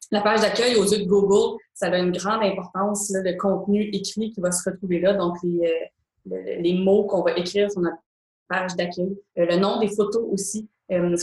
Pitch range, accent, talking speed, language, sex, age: 180-205 Hz, Canadian, 215 wpm, French, female, 20-39